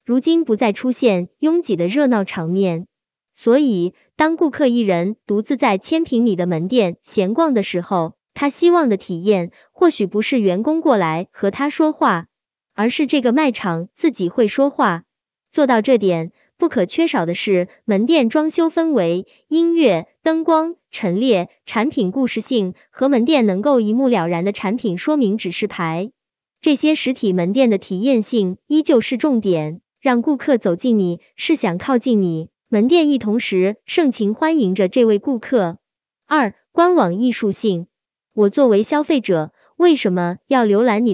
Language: Chinese